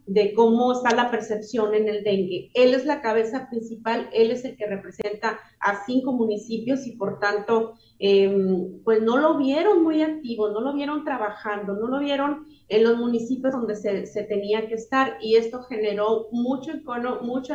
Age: 30-49